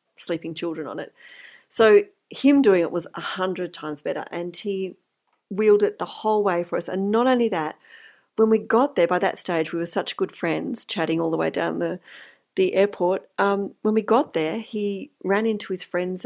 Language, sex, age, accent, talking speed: English, female, 40-59, Australian, 205 wpm